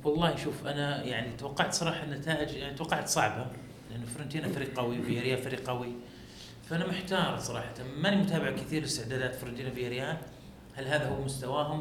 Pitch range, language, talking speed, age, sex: 130-175 Hz, Arabic, 150 wpm, 30-49, male